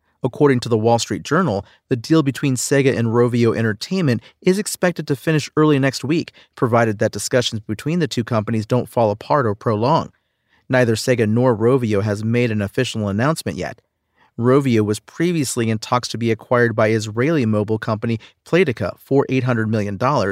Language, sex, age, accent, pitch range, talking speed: English, male, 40-59, American, 110-145 Hz, 170 wpm